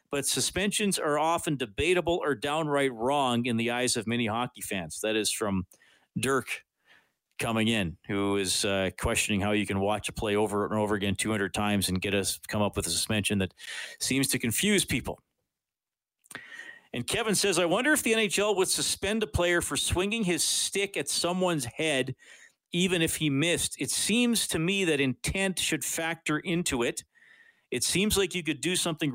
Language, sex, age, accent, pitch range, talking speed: English, male, 40-59, American, 115-165 Hz, 185 wpm